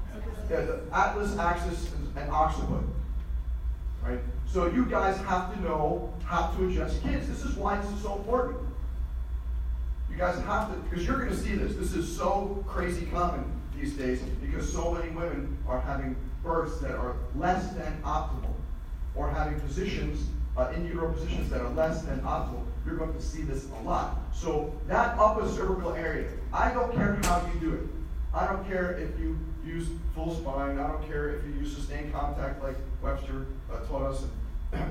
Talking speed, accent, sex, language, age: 180 wpm, American, male, English, 40-59